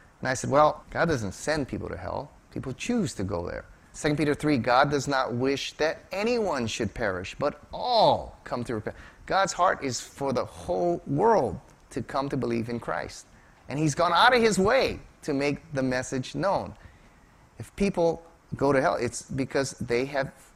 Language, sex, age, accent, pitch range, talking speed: English, male, 30-49, American, 115-155 Hz, 190 wpm